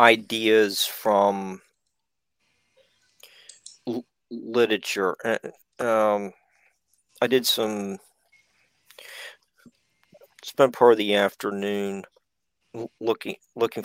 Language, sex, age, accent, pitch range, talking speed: English, male, 50-69, American, 105-120 Hz, 75 wpm